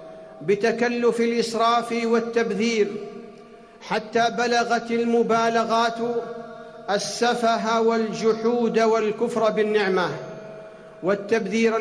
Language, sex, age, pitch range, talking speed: Arabic, male, 50-69, 195-235 Hz, 55 wpm